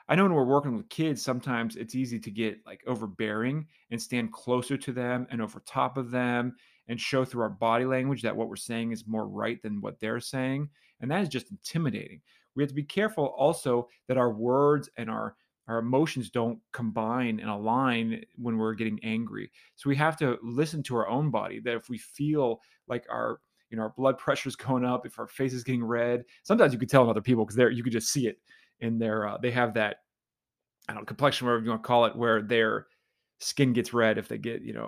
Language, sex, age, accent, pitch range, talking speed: English, male, 30-49, American, 115-140 Hz, 230 wpm